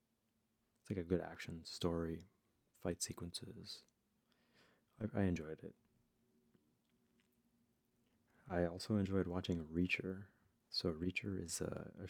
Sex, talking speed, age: male, 100 wpm, 30-49